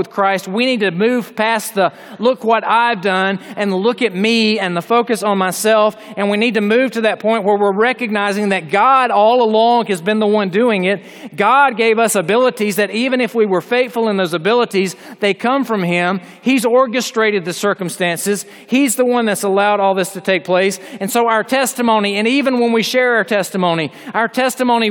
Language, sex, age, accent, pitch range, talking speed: English, male, 40-59, American, 205-250 Hz, 205 wpm